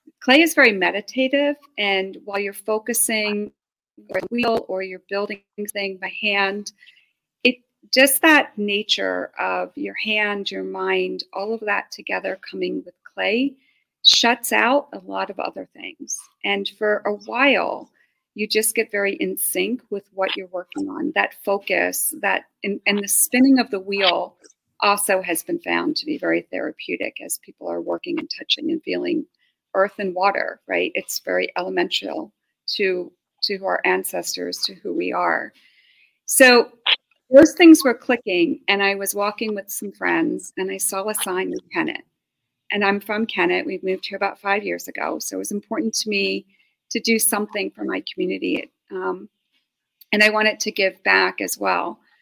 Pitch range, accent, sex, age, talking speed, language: 195-255 Hz, American, female, 40-59, 170 wpm, English